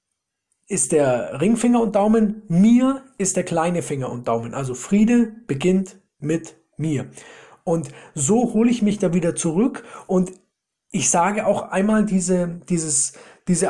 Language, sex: German, male